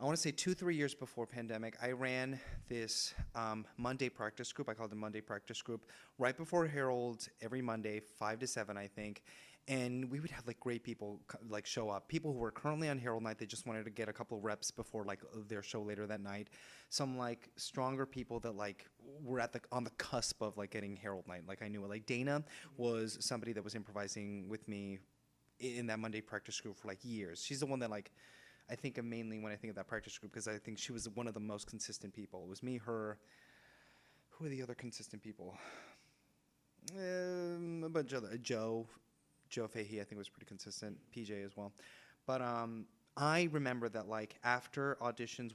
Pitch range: 105-130 Hz